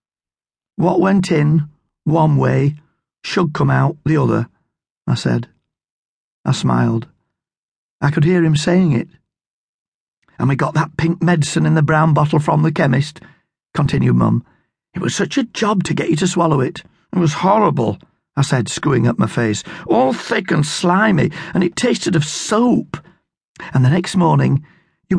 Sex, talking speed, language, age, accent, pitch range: male, 165 wpm, English, 50-69, British, 150-190 Hz